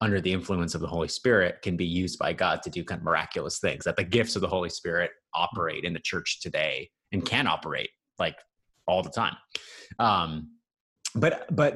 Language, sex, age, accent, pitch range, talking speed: English, male, 30-49, American, 90-115 Hz, 205 wpm